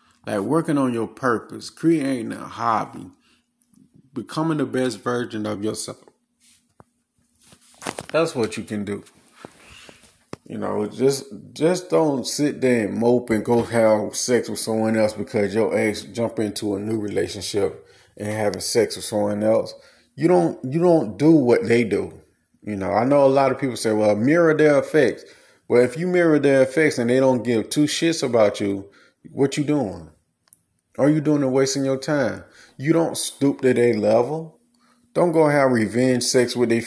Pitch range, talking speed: 110-150 Hz, 175 wpm